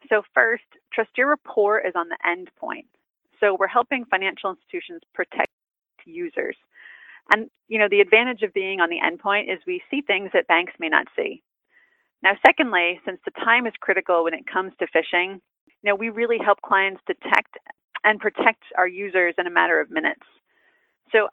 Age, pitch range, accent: 30-49, 180-235 Hz, American